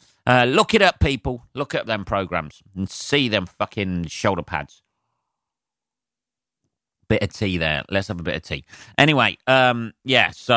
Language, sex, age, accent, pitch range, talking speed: English, male, 30-49, British, 95-120 Hz, 165 wpm